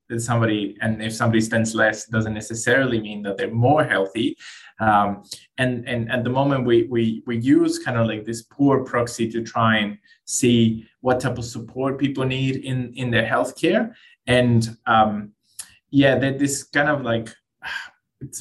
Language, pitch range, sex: English, 110-125 Hz, male